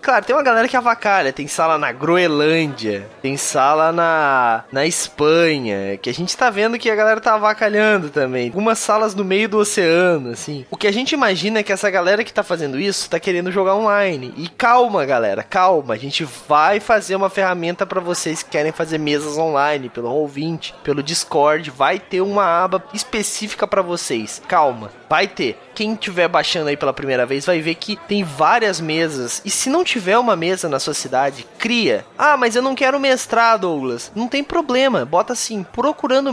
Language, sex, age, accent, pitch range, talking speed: Portuguese, male, 20-39, Brazilian, 165-265 Hz, 195 wpm